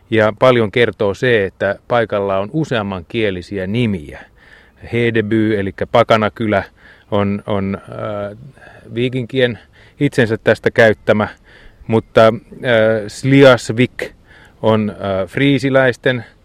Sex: male